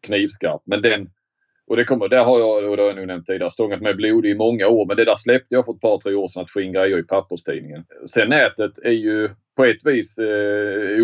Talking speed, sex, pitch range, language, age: 250 wpm, male, 100-135 Hz, English, 30-49